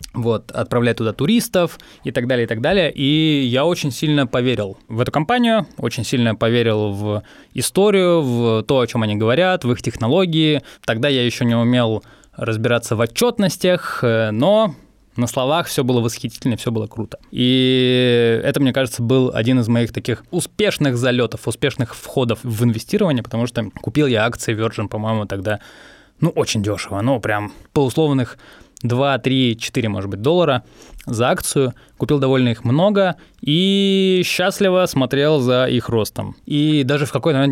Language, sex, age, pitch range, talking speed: Russian, male, 20-39, 115-145 Hz, 165 wpm